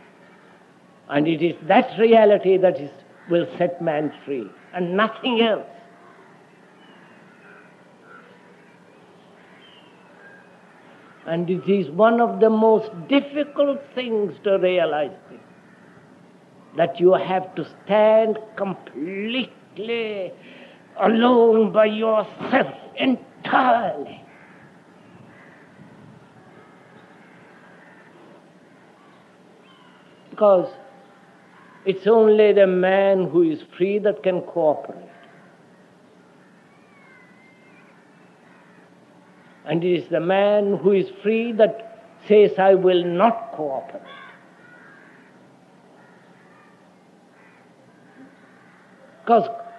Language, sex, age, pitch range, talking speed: English, male, 60-79, 180-225 Hz, 75 wpm